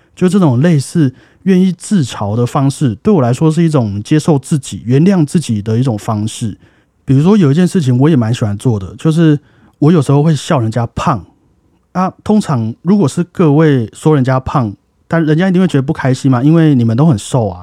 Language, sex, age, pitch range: Chinese, male, 30-49, 115-160 Hz